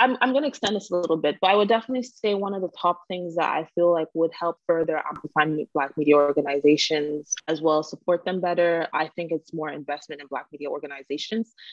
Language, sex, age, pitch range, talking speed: English, female, 20-39, 150-175 Hz, 225 wpm